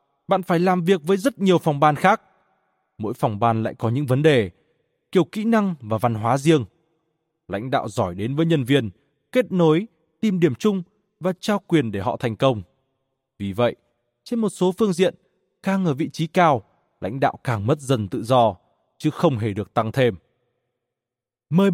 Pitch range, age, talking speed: 125-185 Hz, 20-39, 195 wpm